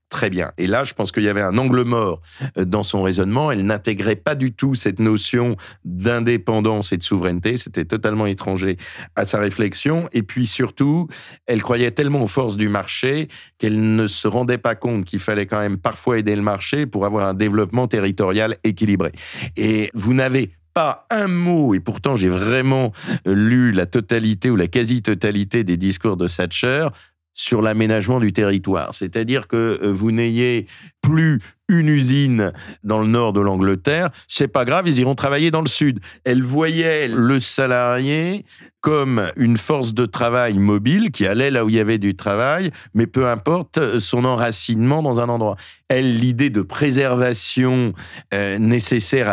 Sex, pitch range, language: male, 105-130 Hz, French